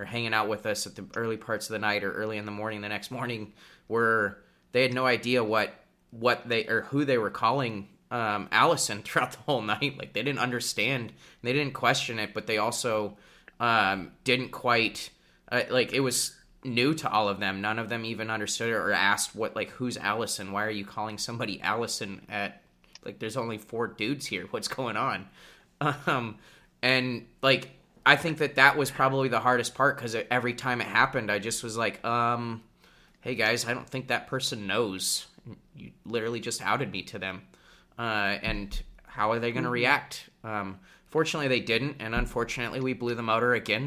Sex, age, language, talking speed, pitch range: male, 20-39, English, 195 wpm, 105-125 Hz